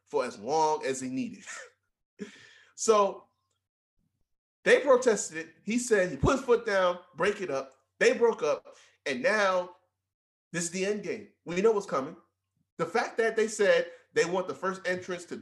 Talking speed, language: 175 wpm, English